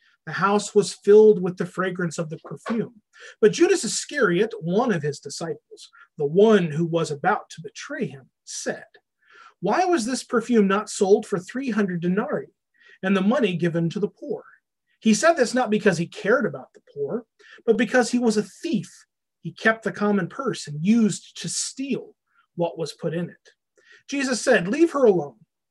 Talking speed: 180 wpm